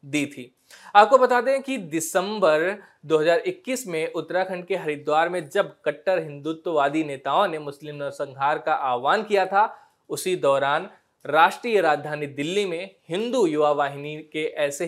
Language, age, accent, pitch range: Hindi, 20-39, native, 145-185 Hz